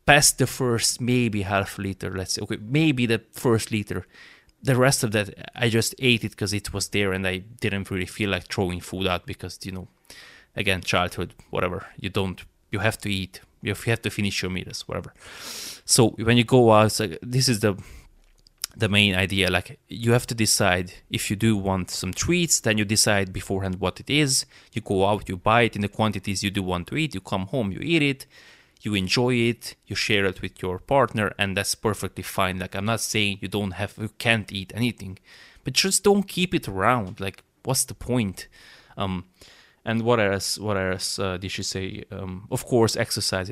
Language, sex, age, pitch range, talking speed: English, male, 20-39, 95-120 Hz, 205 wpm